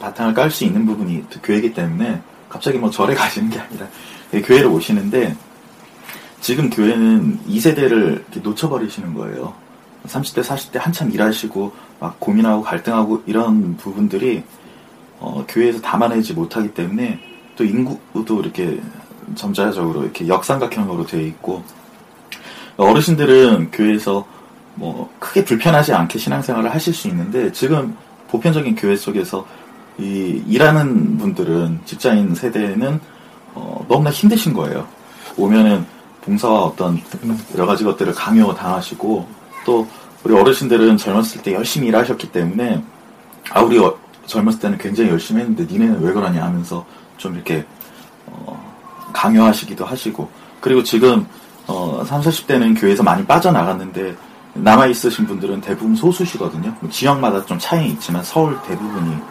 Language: Korean